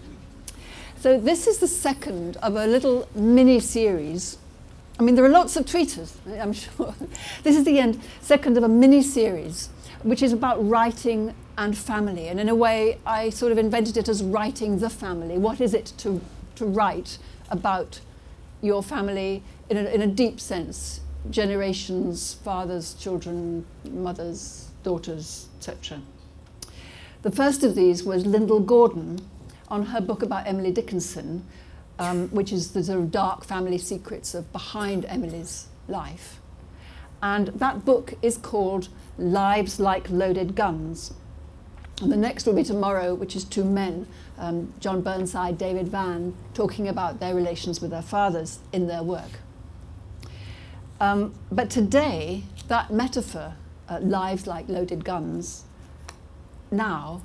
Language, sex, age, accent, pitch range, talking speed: English, female, 60-79, British, 175-225 Hz, 145 wpm